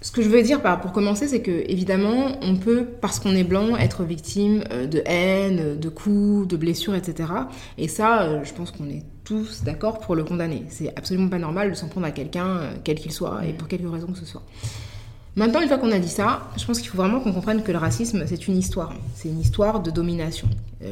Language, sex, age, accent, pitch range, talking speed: French, female, 20-39, French, 155-205 Hz, 230 wpm